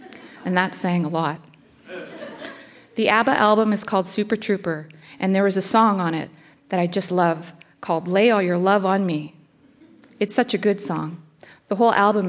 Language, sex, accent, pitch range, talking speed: English, female, American, 175-210 Hz, 185 wpm